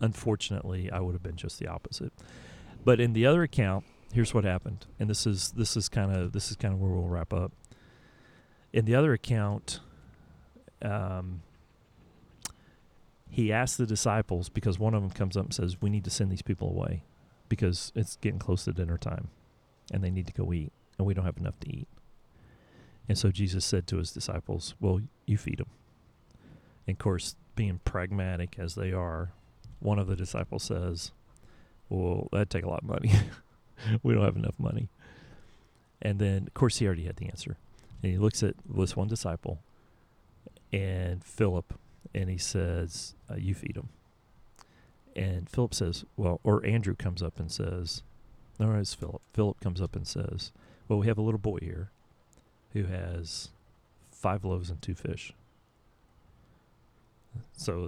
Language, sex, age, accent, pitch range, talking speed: English, male, 40-59, American, 90-110 Hz, 175 wpm